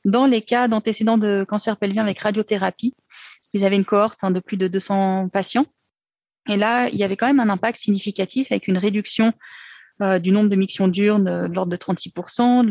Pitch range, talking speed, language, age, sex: 185-215 Hz, 200 wpm, French, 30-49, female